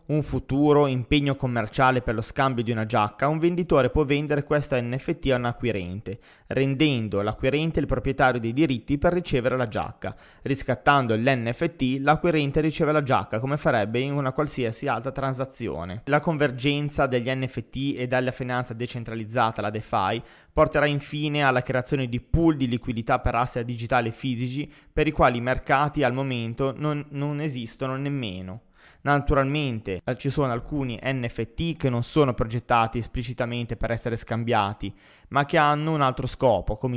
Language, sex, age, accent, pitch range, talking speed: Italian, male, 20-39, native, 120-145 Hz, 155 wpm